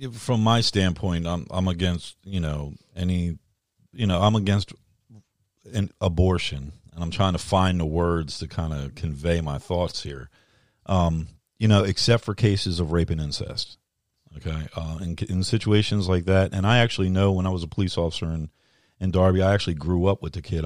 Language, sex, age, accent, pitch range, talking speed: English, male, 40-59, American, 85-110 Hz, 190 wpm